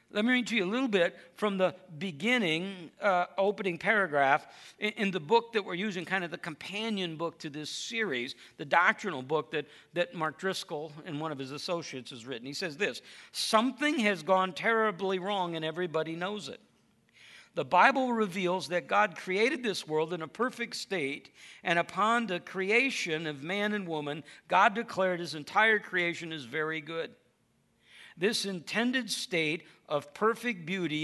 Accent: American